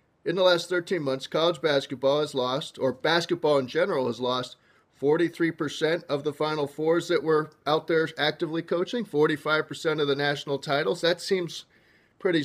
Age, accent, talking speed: 40-59, American, 165 wpm